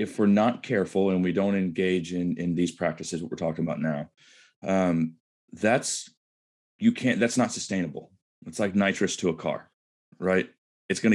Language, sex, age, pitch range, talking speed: English, male, 30-49, 85-110 Hz, 180 wpm